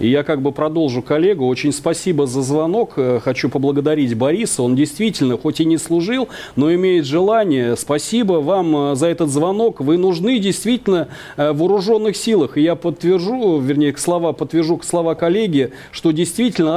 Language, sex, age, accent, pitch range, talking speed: Russian, male, 40-59, native, 145-185 Hz, 155 wpm